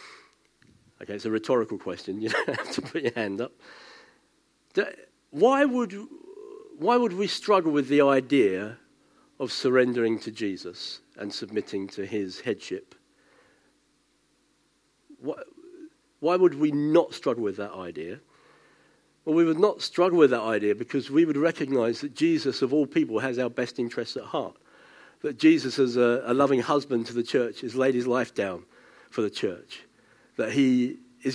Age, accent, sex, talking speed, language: 50-69, British, male, 155 wpm, English